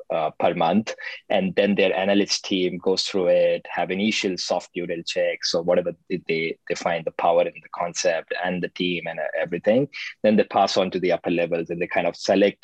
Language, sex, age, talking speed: English, male, 20-39, 210 wpm